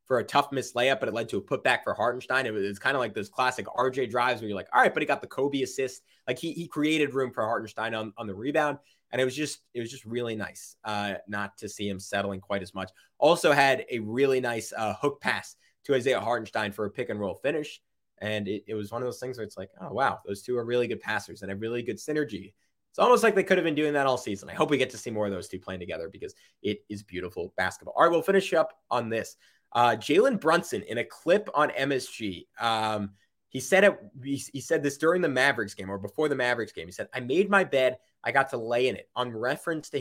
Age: 20-39